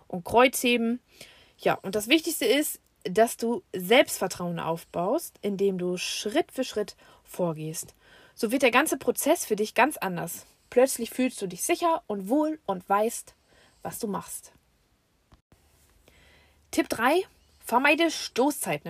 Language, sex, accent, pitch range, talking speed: German, female, German, 195-255 Hz, 130 wpm